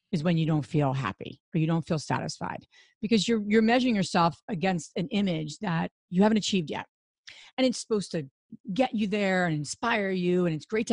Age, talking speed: 40-59, 210 wpm